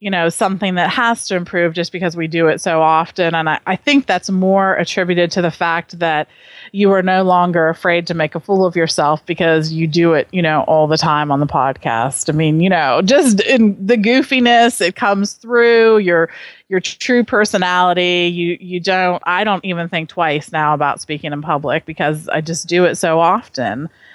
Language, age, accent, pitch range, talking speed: English, 30-49, American, 165-200 Hz, 205 wpm